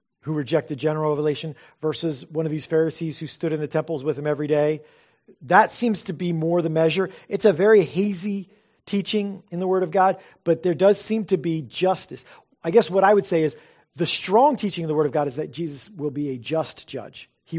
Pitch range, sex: 155-195 Hz, male